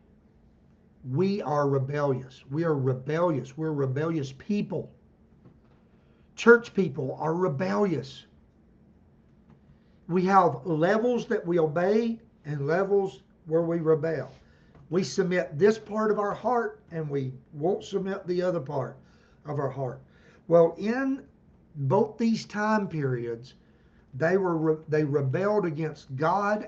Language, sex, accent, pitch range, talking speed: English, male, American, 155-215 Hz, 120 wpm